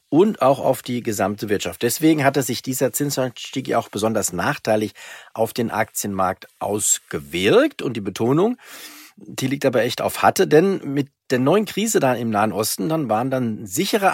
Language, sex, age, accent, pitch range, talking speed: German, male, 40-59, German, 110-150 Hz, 170 wpm